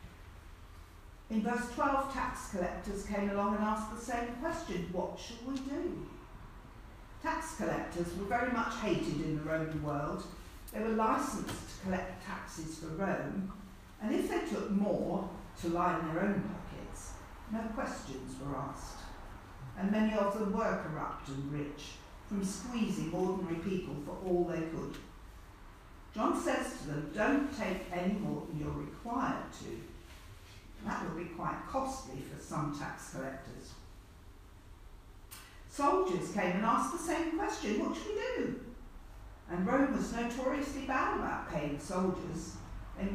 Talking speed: 145 wpm